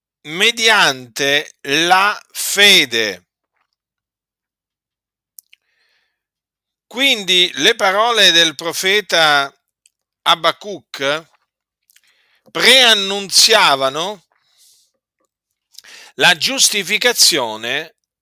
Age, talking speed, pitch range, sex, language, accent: 50-69, 40 wpm, 145-225 Hz, male, Italian, native